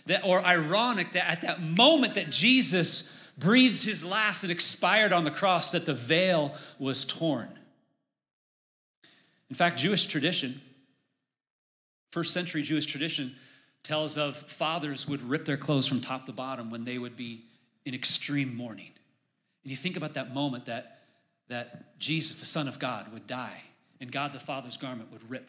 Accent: American